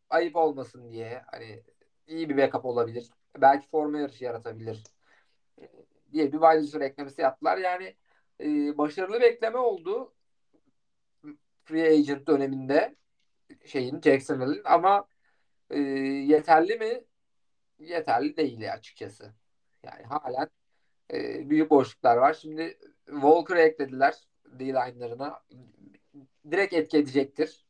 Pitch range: 140-175 Hz